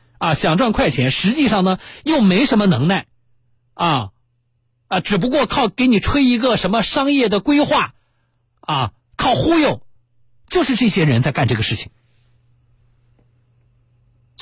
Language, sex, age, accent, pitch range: Chinese, male, 50-69, native, 120-185 Hz